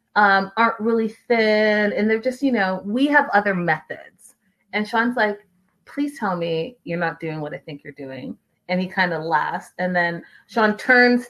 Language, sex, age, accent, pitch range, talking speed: English, female, 30-49, American, 195-250 Hz, 190 wpm